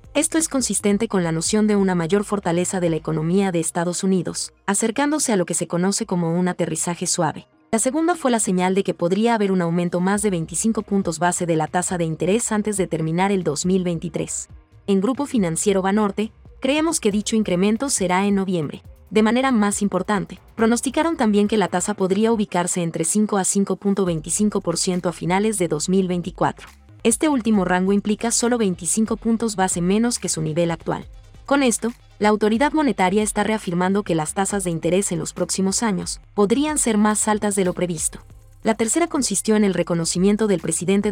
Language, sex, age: Spanish, female, 30-49